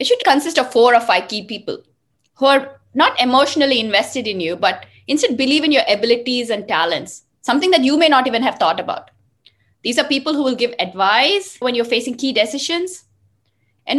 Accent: Indian